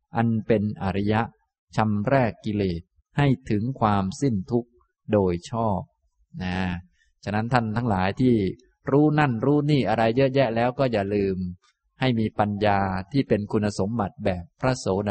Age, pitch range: 20-39, 100-125 Hz